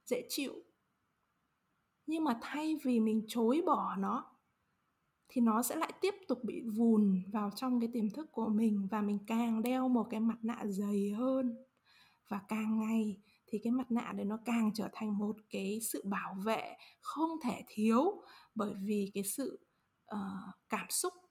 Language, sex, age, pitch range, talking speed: Vietnamese, female, 20-39, 215-265 Hz, 175 wpm